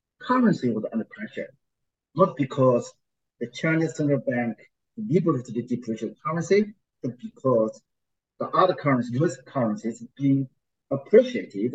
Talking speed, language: 115 wpm, English